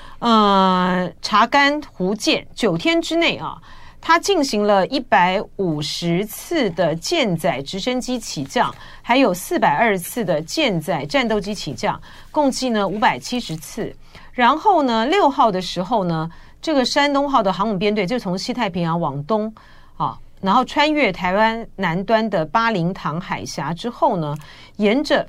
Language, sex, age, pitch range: Chinese, female, 40-59, 175-250 Hz